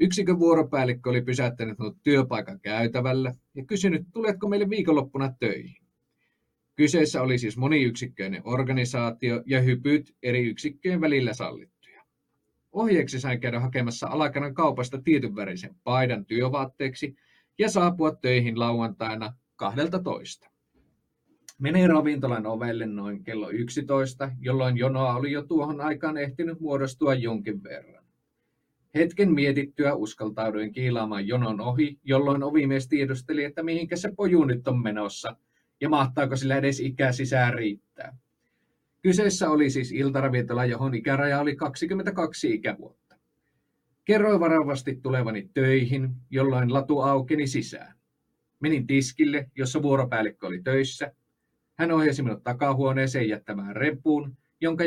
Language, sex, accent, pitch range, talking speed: Finnish, male, native, 125-155 Hz, 115 wpm